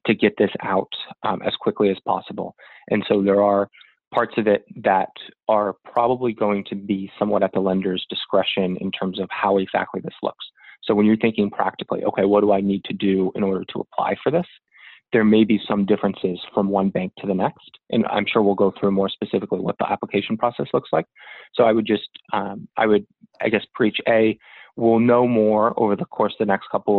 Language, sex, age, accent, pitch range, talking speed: English, male, 20-39, American, 95-110 Hz, 220 wpm